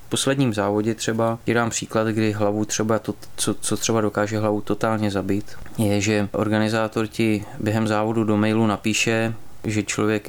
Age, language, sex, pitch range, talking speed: 20-39, Czech, male, 105-115 Hz, 165 wpm